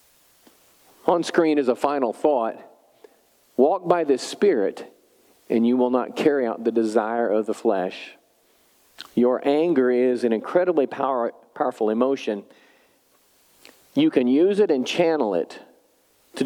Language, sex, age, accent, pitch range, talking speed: English, male, 50-69, American, 110-150 Hz, 130 wpm